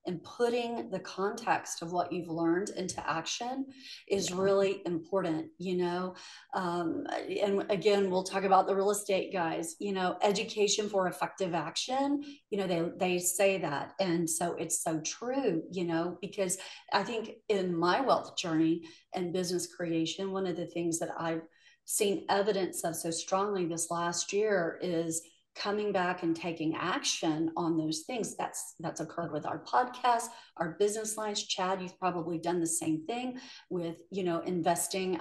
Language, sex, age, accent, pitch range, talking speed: English, female, 40-59, American, 170-205 Hz, 165 wpm